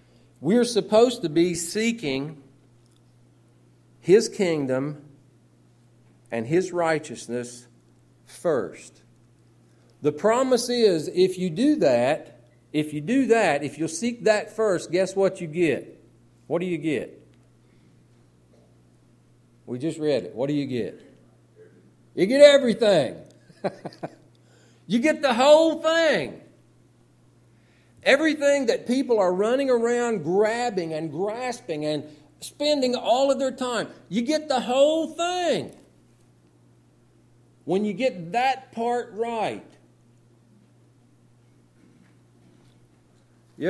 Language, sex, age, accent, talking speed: English, male, 50-69, American, 105 wpm